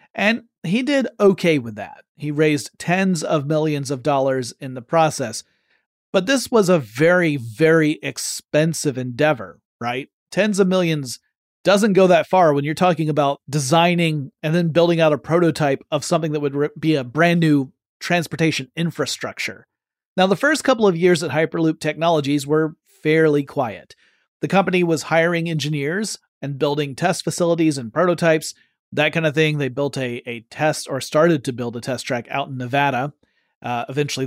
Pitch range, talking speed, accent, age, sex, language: 140-170 Hz, 170 wpm, American, 40-59, male, English